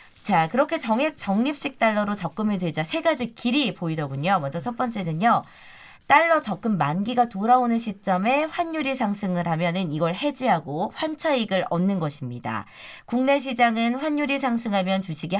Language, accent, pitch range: Korean, native, 170-255 Hz